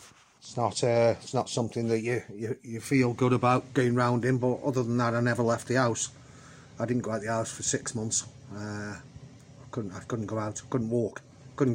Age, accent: 30-49, British